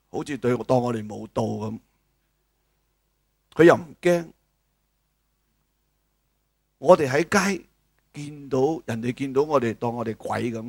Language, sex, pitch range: Chinese, male, 115-160 Hz